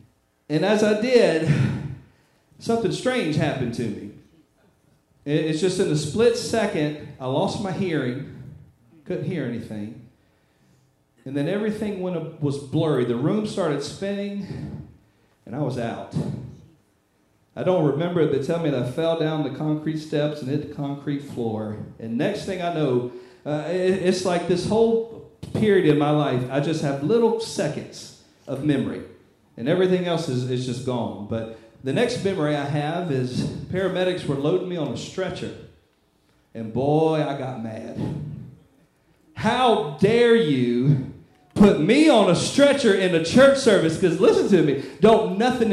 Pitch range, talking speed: 140-195 Hz, 155 wpm